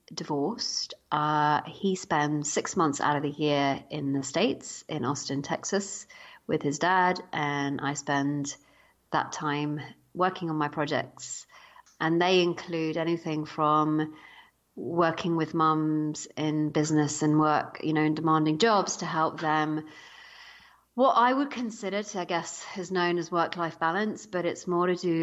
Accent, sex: British, female